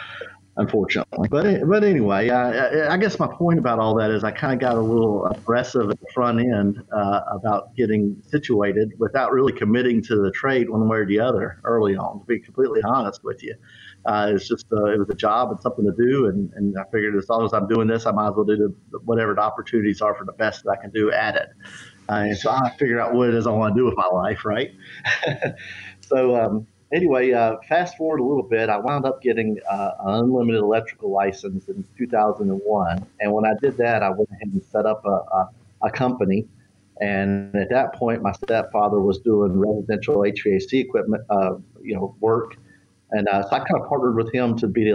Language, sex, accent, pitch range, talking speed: English, male, American, 105-120 Hz, 220 wpm